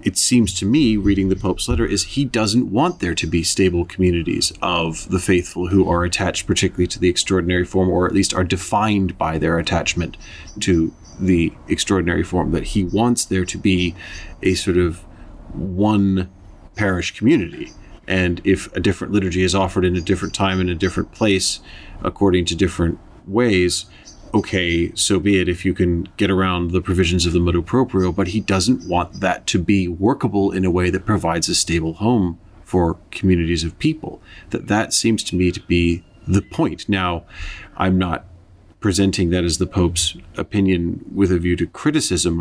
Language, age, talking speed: English, 30-49, 185 wpm